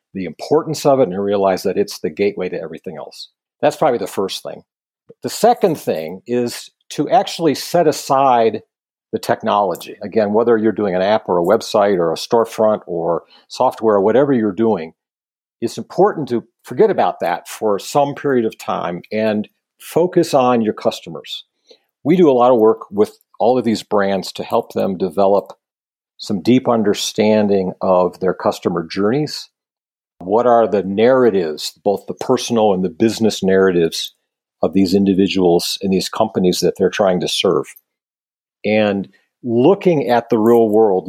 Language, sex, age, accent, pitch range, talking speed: English, male, 50-69, American, 95-120 Hz, 165 wpm